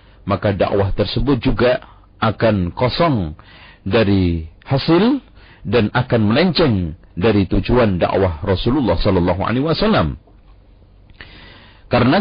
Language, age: Indonesian, 50-69